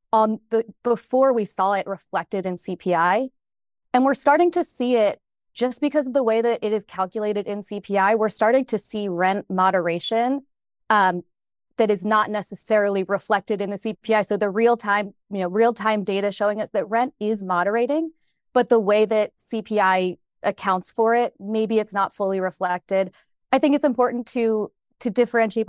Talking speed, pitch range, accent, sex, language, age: 180 wpm, 190-230 Hz, American, female, English, 20-39